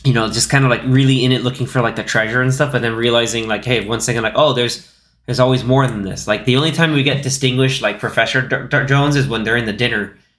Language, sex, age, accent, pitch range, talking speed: English, male, 20-39, American, 115-140 Hz, 285 wpm